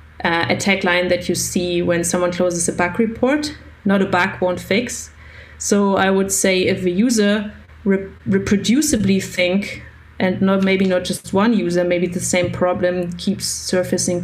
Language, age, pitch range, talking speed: English, 30-49, 180-205 Hz, 170 wpm